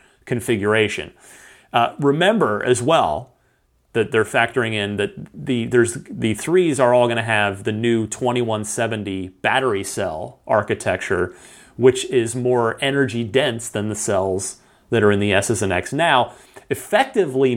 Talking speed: 145 wpm